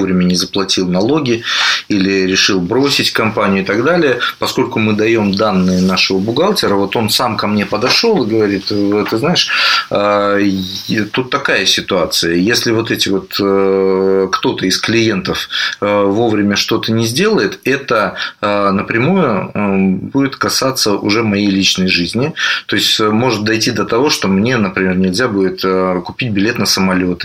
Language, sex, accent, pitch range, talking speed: Russian, male, native, 95-115 Hz, 140 wpm